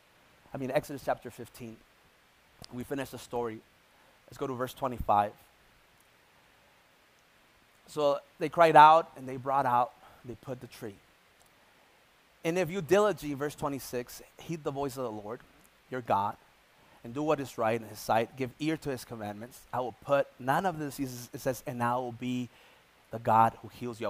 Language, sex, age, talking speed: English, male, 30-49, 175 wpm